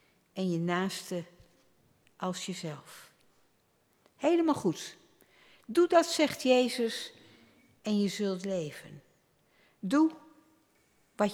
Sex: female